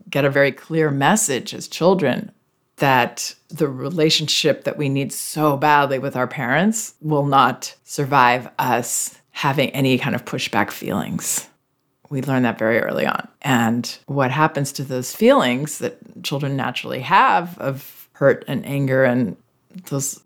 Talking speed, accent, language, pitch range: 150 wpm, American, English, 130-160 Hz